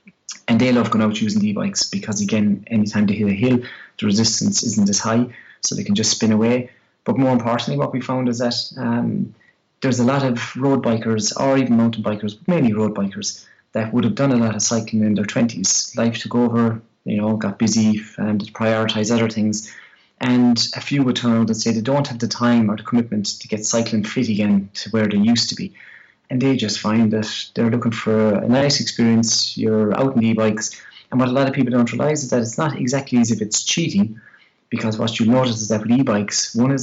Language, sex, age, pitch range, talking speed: English, male, 30-49, 110-130 Hz, 230 wpm